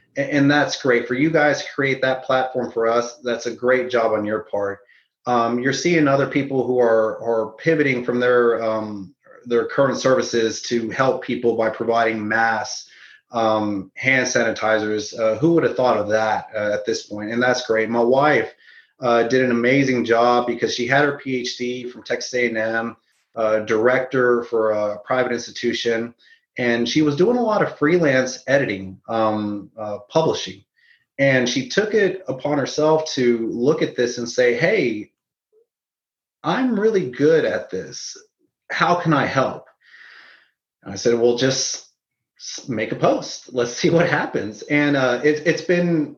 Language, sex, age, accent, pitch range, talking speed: English, male, 30-49, American, 115-140 Hz, 170 wpm